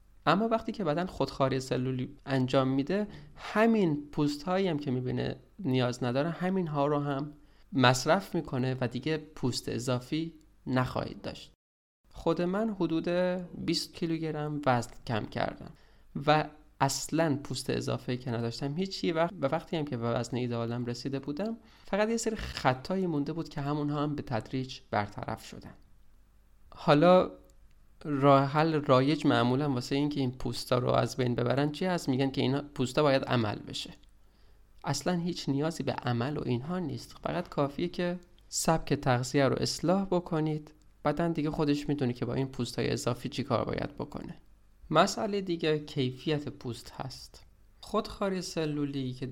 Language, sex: Persian, male